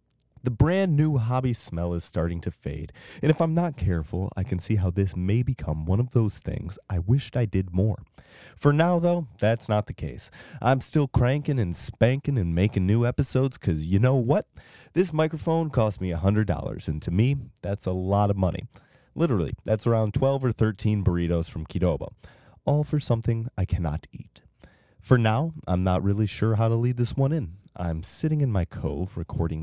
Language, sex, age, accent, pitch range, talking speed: English, male, 20-39, American, 90-125 Hz, 195 wpm